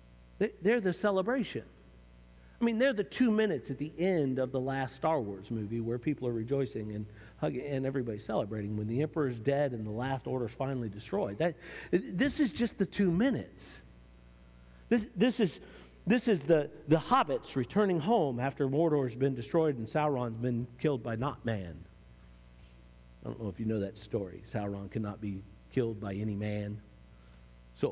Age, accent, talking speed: 50-69, American, 170 wpm